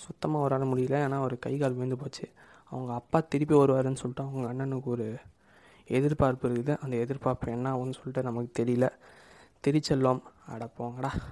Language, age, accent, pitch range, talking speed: Tamil, 20-39, native, 120-145 Hz, 150 wpm